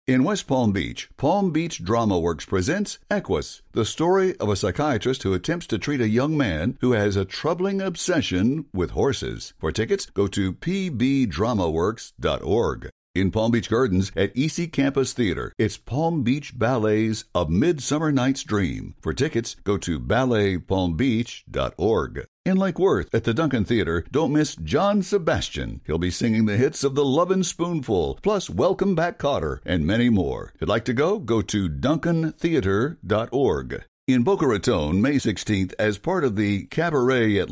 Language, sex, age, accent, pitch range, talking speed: English, male, 60-79, American, 100-150 Hz, 160 wpm